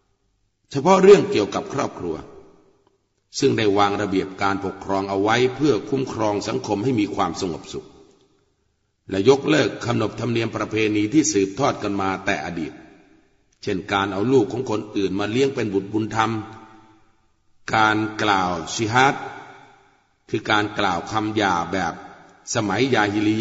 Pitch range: 100-135 Hz